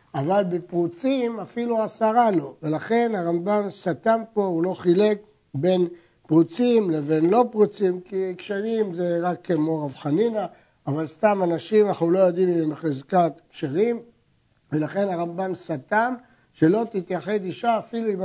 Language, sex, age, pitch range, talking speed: Hebrew, male, 60-79, 165-215 Hz, 140 wpm